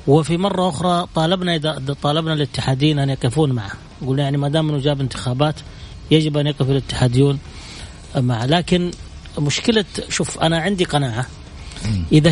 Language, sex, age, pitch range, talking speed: Arabic, male, 30-49, 130-170 Hz, 140 wpm